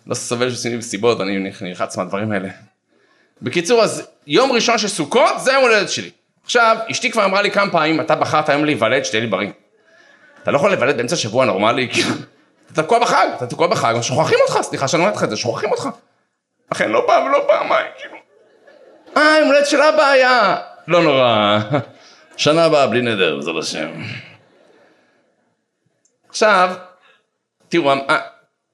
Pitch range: 120-200 Hz